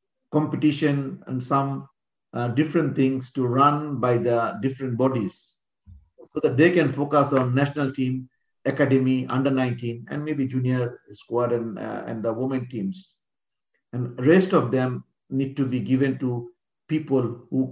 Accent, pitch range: Indian, 130-155 Hz